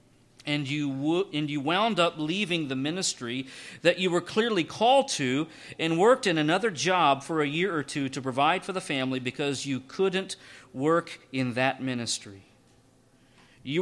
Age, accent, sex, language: 40-59, American, male, English